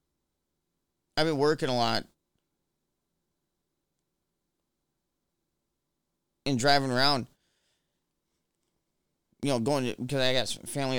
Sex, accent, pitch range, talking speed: male, American, 115-150 Hz, 85 wpm